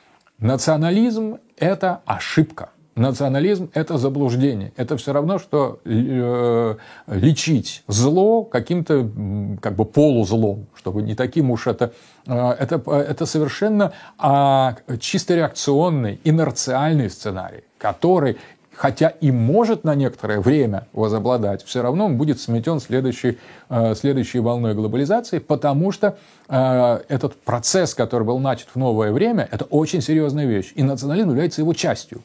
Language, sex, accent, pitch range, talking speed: Russian, male, native, 120-160 Hz, 120 wpm